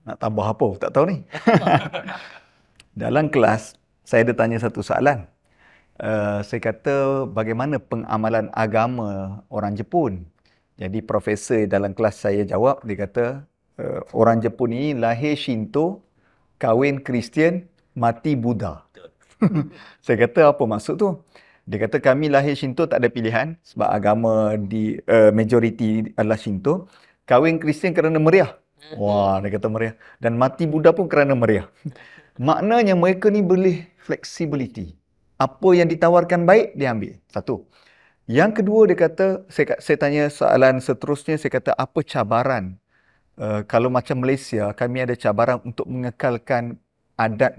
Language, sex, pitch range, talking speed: Malay, male, 110-145 Hz, 135 wpm